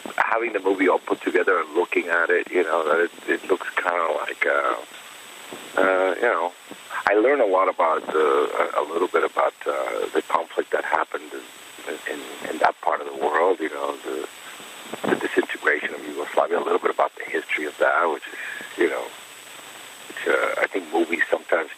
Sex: male